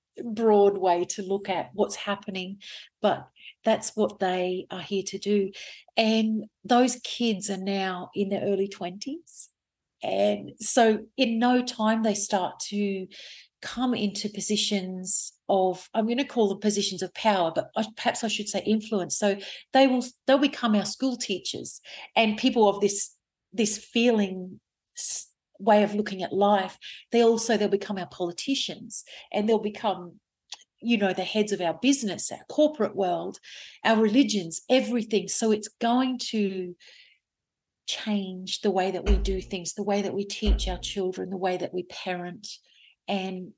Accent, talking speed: Australian, 160 wpm